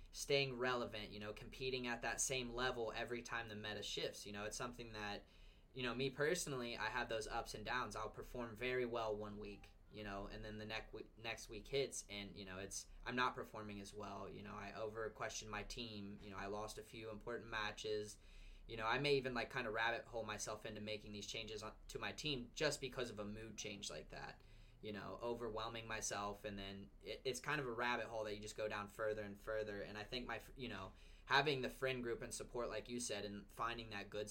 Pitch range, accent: 100-120 Hz, American